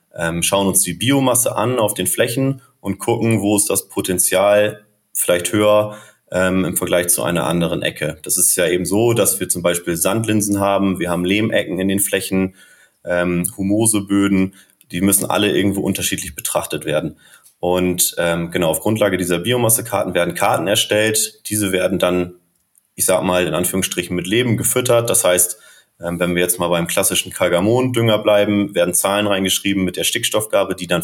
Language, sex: German, male